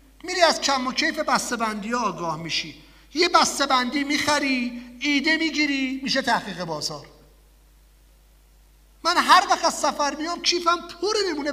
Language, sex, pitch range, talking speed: English, male, 195-315 Hz, 145 wpm